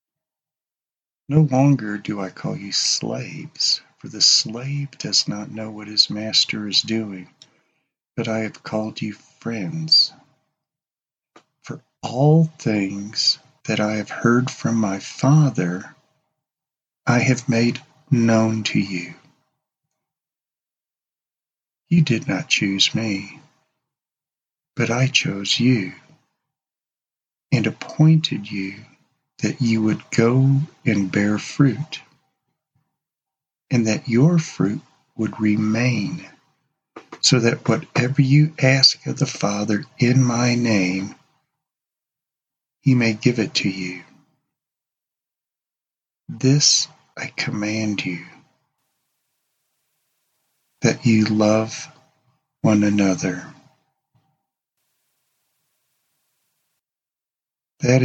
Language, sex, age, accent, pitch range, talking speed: English, male, 50-69, American, 105-145 Hz, 95 wpm